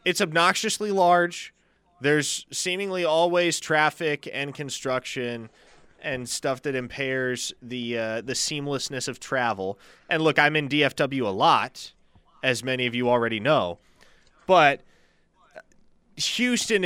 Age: 20-39